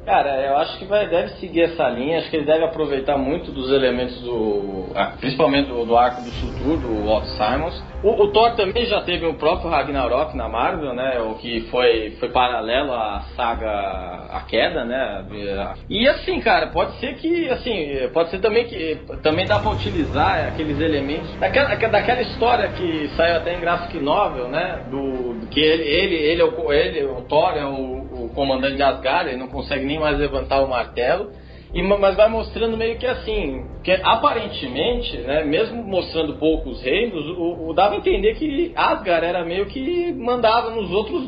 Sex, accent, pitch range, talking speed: male, Brazilian, 140-215 Hz, 185 wpm